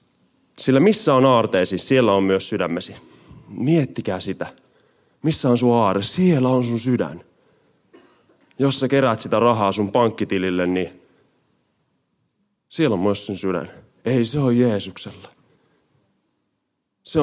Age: 30-49